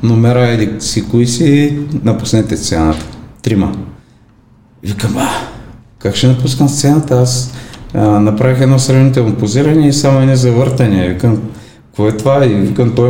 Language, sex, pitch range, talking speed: Bulgarian, male, 105-130 Hz, 130 wpm